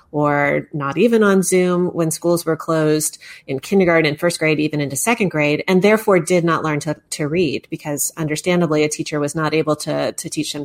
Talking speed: 210 wpm